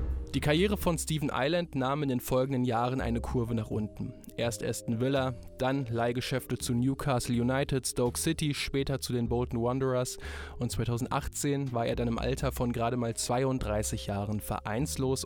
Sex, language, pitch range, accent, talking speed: male, German, 110-135 Hz, German, 165 wpm